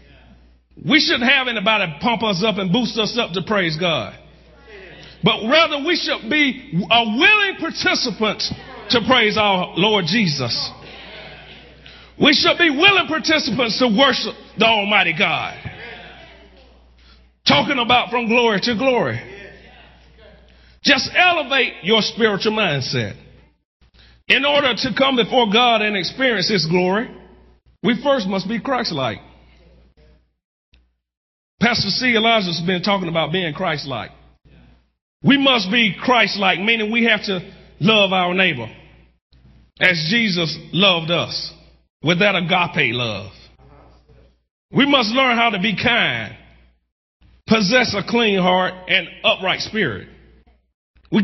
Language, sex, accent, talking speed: English, male, American, 125 wpm